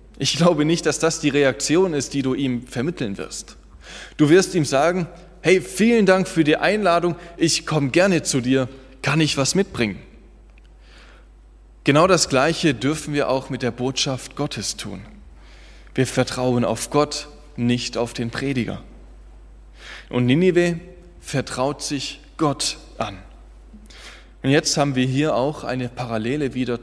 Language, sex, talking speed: German, male, 150 wpm